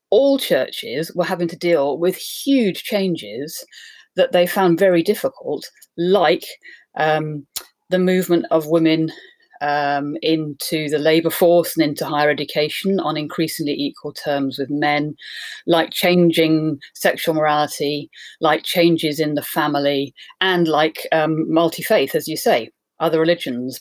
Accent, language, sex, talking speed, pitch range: British, English, female, 135 wpm, 155-190 Hz